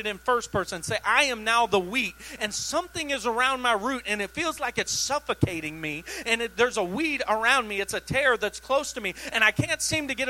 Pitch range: 265-315 Hz